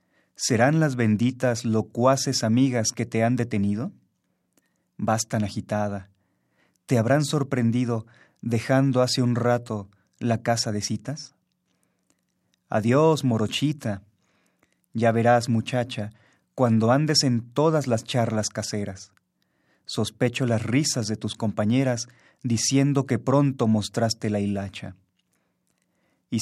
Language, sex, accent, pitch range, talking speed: Spanish, male, Mexican, 110-135 Hz, 110 wpm